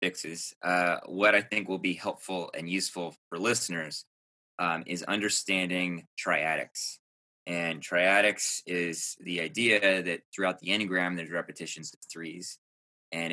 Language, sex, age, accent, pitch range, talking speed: English, male, 20-39, American, 85-100 Hz, 135 wpm